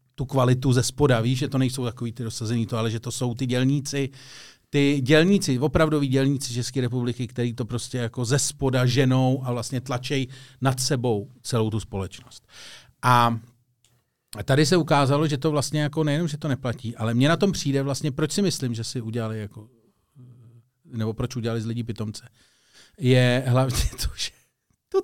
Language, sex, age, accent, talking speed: Czech, male, 40-59, native, 175 wpm